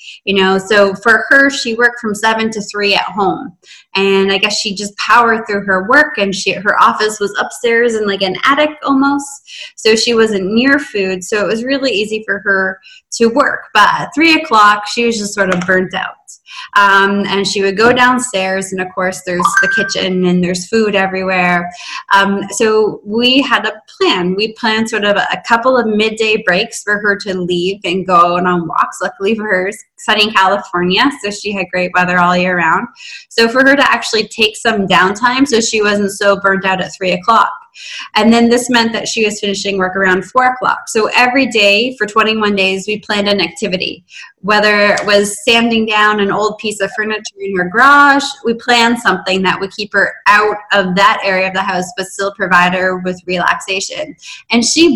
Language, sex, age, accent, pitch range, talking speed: English, female, 20-39, American, 190-230 Hz, 200 wpm